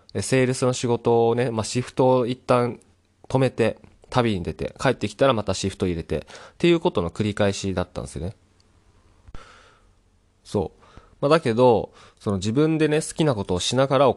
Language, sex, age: Japanese, male, 20-39